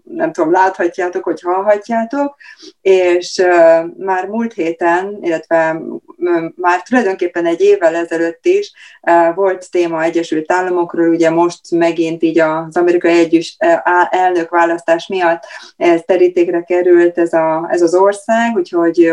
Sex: female